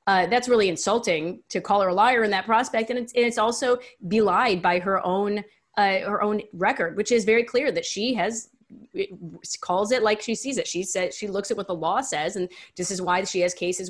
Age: 30-49